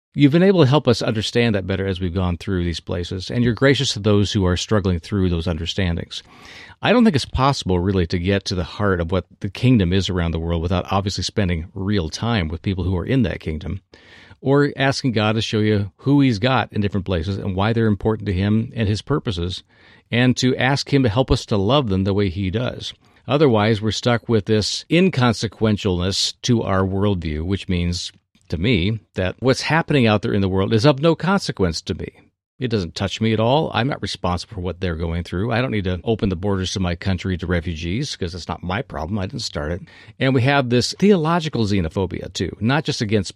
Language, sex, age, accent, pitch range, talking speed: English, male, 50-69, American, 95-120 Hz, 225 wpm